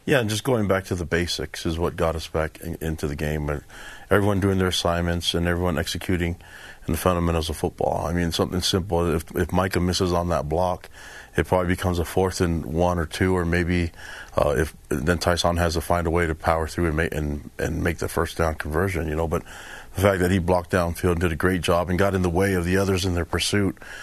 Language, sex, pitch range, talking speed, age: English, male, 80-90 Hz, 240 wpm, 40-59